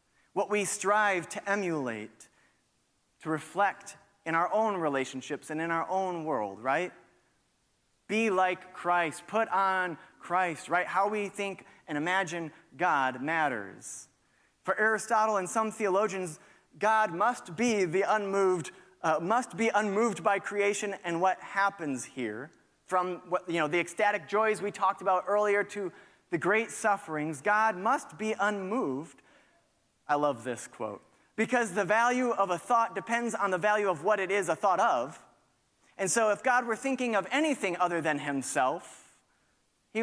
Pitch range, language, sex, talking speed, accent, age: 170-215 Hz, English, male, 155 wpm, American, 30-49